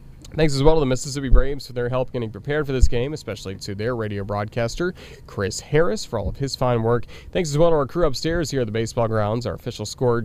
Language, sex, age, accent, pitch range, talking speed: English, male, 30-49, American, 105-140 Hz, 250 wpm